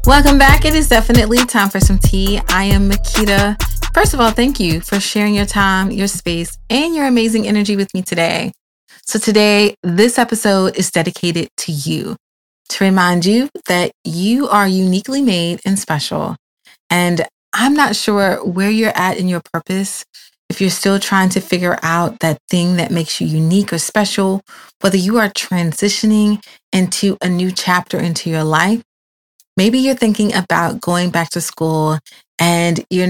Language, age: English, 30-49